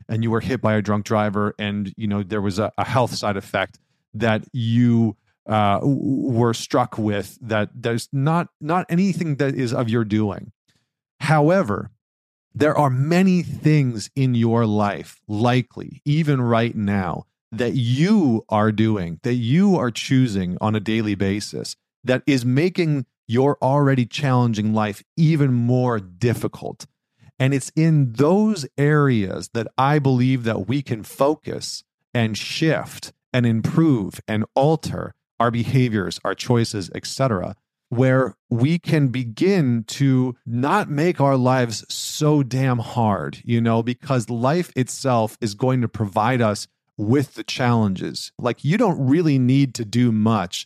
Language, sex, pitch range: English, male, 110-140 Hz